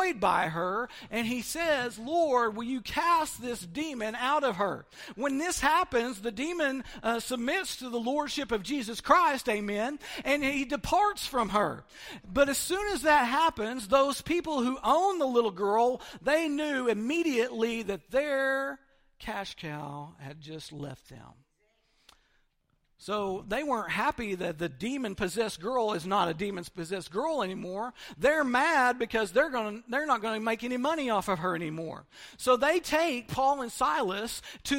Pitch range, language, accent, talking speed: 215-285 Hz, English, American, 165 wpm